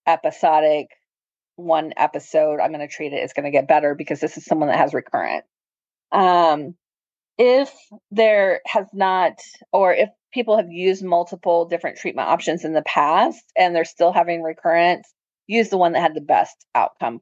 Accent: American